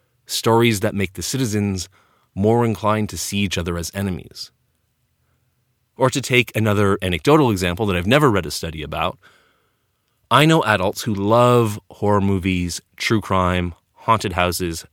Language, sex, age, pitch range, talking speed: English, male, 30-49, 95-115 Hz, 150 wpm